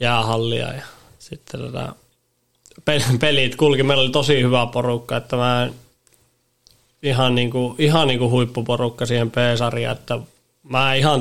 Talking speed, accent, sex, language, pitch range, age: 145 wpm, native, male, Finnish, 115-130 Hz, 20-39